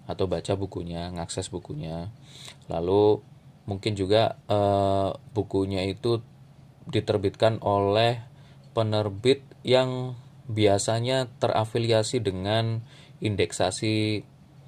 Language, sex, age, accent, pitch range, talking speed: Indonesian, male, 20-39, native, 100-135 Hz, 80 wpm